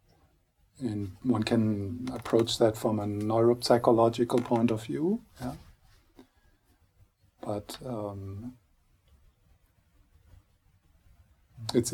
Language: English